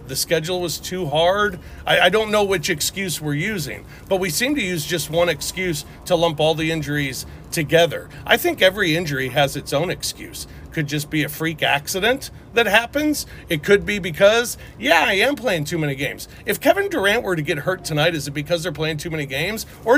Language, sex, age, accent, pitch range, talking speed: English, male, 40-59, American, 160-215 Hz, 215 wpm